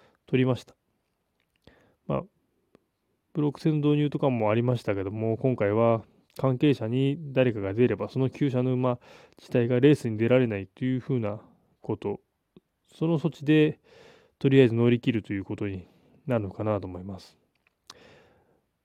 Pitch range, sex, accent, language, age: 115-145 Hz, male, native, Japanese, 20-39